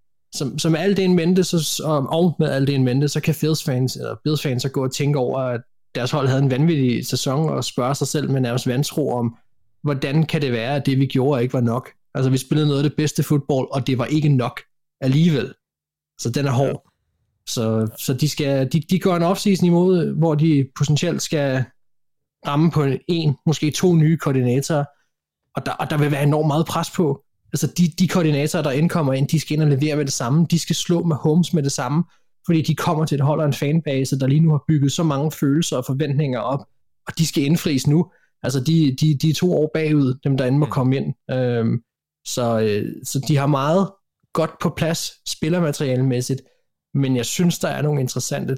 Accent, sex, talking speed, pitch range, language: native, male, 215 wpm, 130-155 Hz, Danish